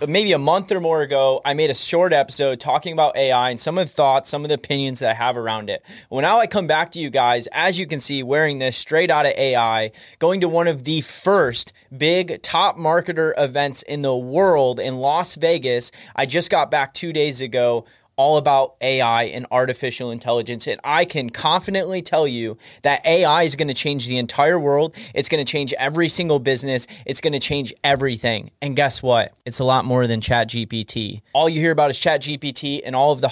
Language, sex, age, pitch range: English, male, 20-39, 130-170 Hz